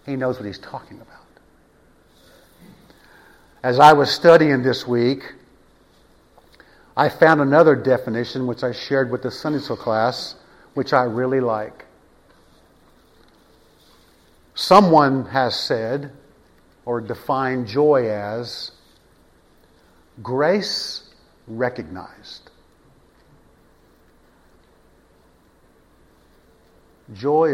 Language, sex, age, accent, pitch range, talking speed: English, male, 50-69, American, 105-145 Hz, 85 wpm